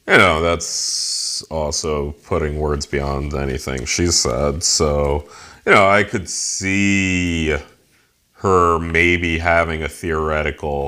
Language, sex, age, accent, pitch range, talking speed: English, male, 30-49, American, 75-105 Hz, 115 wpm